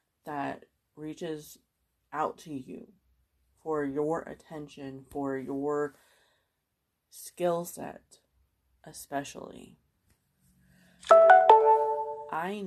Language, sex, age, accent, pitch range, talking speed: English, female, 30-49, American, 140-155 Hz, 65 wpm